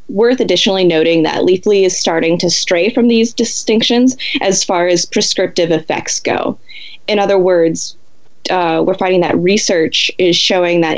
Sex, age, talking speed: female, 20-39, 160 wpm